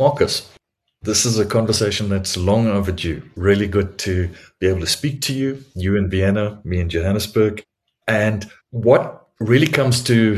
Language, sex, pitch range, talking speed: English, male, 90-105 Hz, 160 wpm